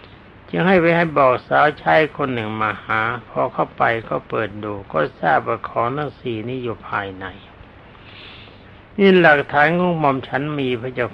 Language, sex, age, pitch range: Thai, male, 60-79, 100-145 Hz